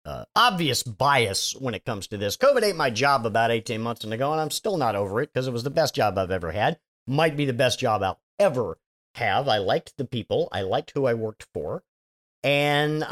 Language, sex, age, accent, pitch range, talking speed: English, male, 50-69, American, 120-195 Hz, 230 wpm